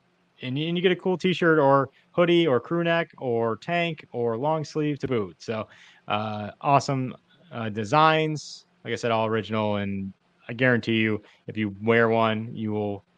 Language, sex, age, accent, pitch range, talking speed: English, male, 20-39, American, 100-135 Hz, 175 wpm